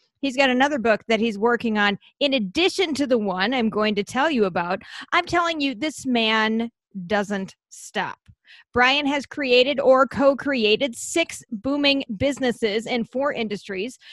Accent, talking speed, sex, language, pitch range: American, 155 wpm, female, English, 220-275 Hz